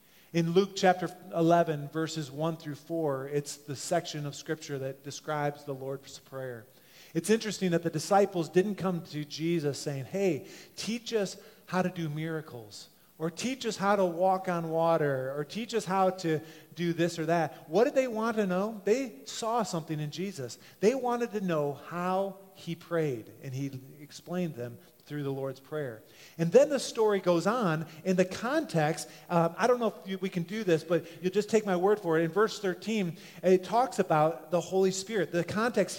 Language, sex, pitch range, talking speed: English, male, 160-205 Hz, 190 wpm